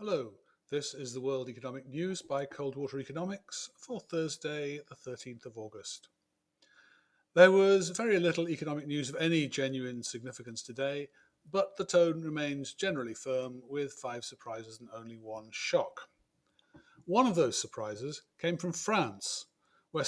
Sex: male